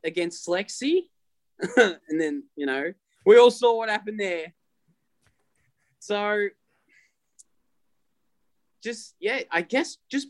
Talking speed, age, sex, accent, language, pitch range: 105 wpm, 20-39, male, Australian, English, 150-210 Hz